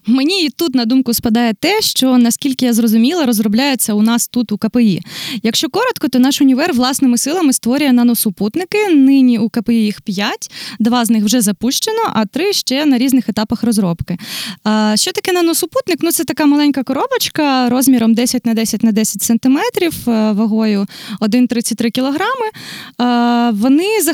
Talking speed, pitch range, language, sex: 145 wpm, 215-265 Hz, Ukrainian, female